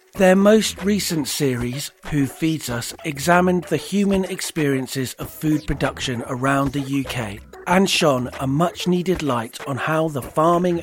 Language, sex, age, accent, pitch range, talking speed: English, male, 40-59, British, 130-170 Hz, 145 wpm